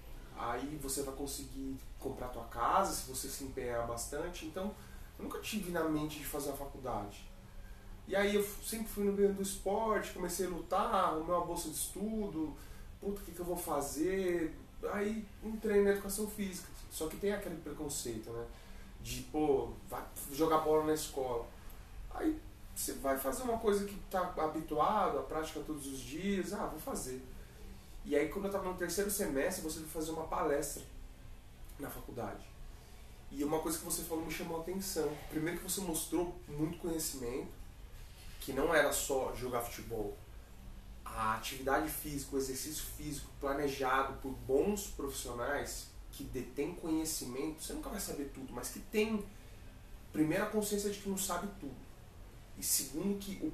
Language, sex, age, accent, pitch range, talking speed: Portuguese, male, 20-39, Brazilian, 130-185 Hz, 165 wpm